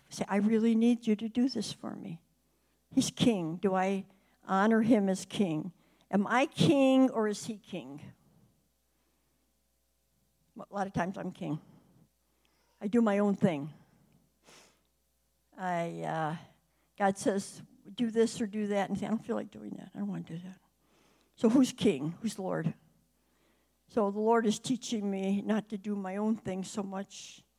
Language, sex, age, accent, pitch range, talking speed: English, female, 60-79, American, 180-220 Hz, 170 wpm